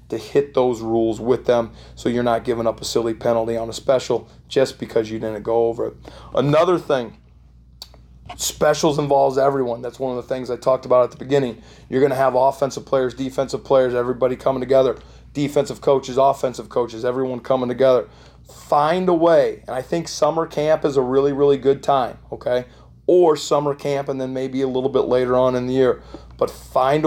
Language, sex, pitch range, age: English, male, 120-140 Hz, 30-49